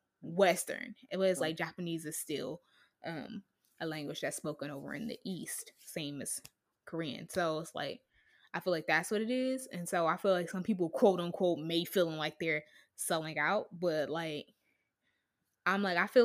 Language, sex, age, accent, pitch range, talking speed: English, female, 20-39, American, 160-200 Hz, 185 wpm